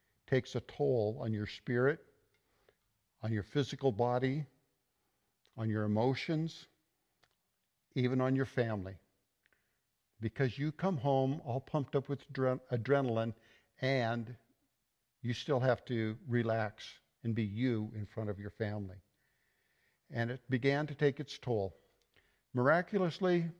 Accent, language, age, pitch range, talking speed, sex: American, English, 60-79, 110-145 Hz, 120 wpm, male